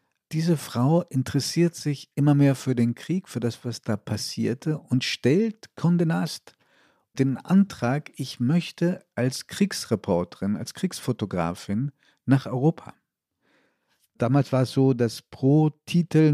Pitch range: 110-140 Hz